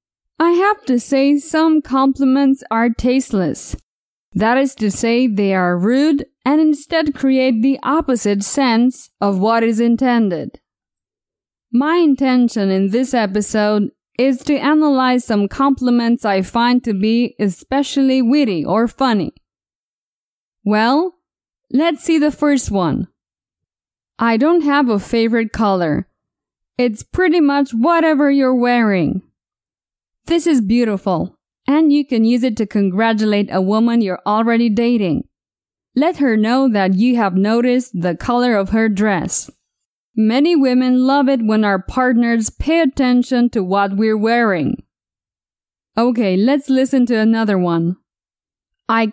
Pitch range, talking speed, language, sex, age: 210-270 Hz, 130 wpm, English, female, 20-39